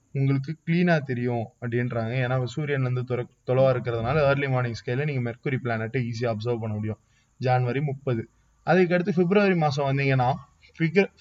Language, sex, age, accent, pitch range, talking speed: Tamil, male, 20-39, native, 120-145 Hz, 135 wpm